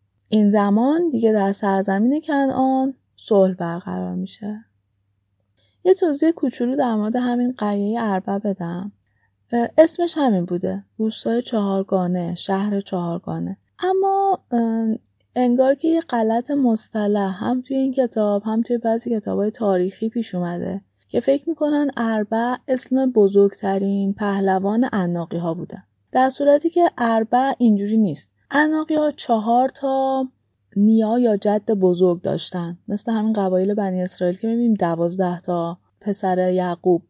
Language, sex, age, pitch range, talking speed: Persian, female, 20-39, 190-250 Hz, 125 wpm